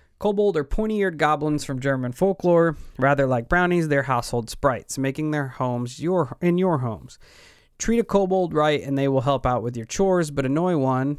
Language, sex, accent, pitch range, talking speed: English, male, American, 125-155 Hz, 190 wpm